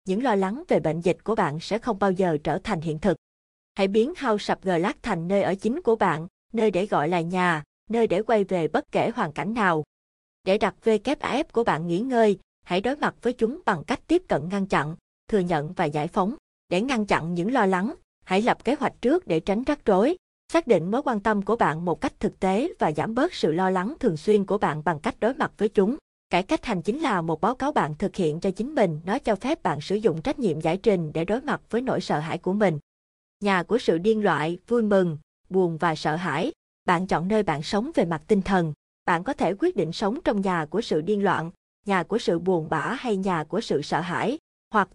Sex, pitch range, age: female, 170-225 Hz, 20-39